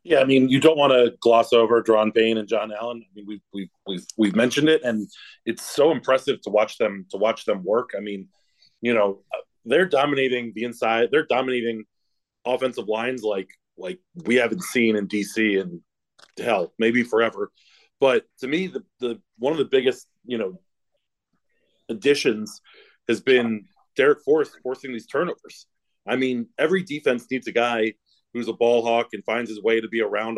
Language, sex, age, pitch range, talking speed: English, male, 30-49, 110-135 Hz, 185 wpm